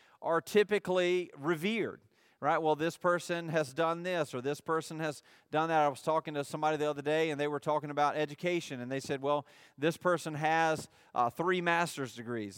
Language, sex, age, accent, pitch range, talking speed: English, male, 40-59, American, 145-185 Hz, 195 wpm